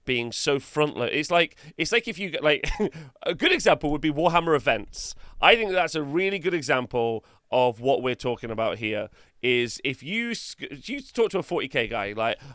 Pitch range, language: 115-155 Hz, English